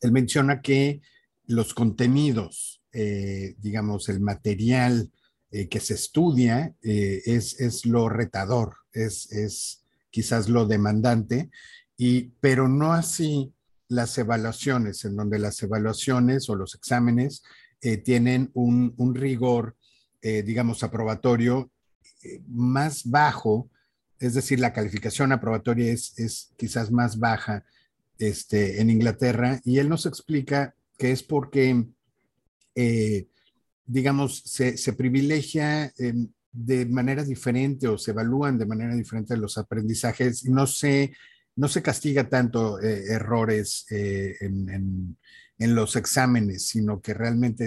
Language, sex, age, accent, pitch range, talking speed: Spanish, male, 50-69, Mexican, 110-130 Hz, 120 wpm